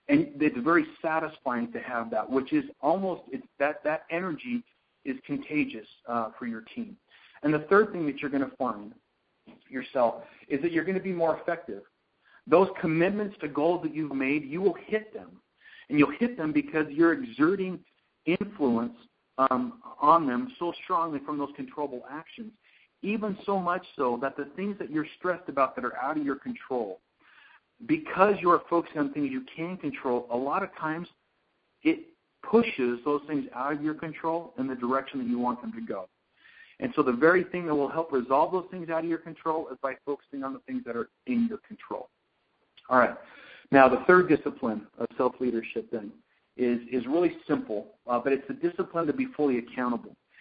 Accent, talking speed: American, 190 wpm